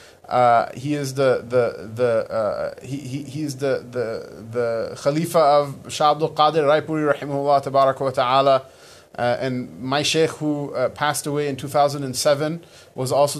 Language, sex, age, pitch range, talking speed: English, male, 20-39, 135-165 Hz, 110 wpm